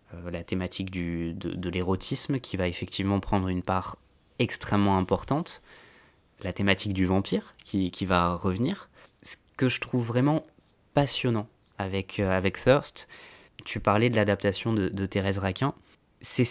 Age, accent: 20-39, French